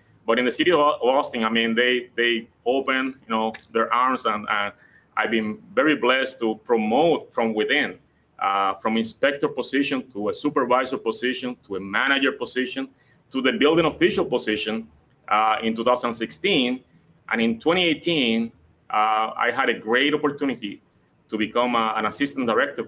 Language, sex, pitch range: English, male, 110-135 Hz